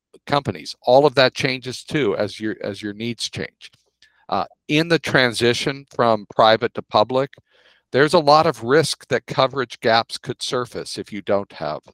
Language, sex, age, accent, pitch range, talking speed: English, male, 50-69, American, 100-125 Hz, 170 wpm